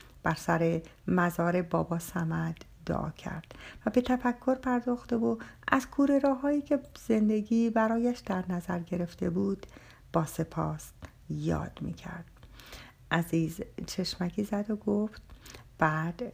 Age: 60-79